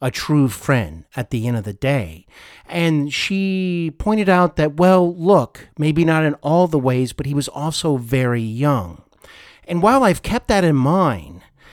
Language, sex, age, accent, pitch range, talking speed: English, male, 50-69, American, 120-165 Hz, 180 wpm